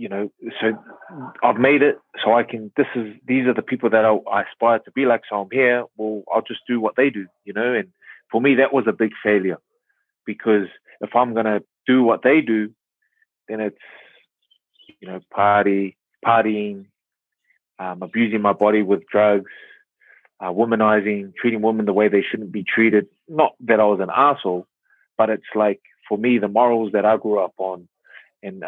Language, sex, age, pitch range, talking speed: English, male, 20-39, 100-125 Hz, 190 wpm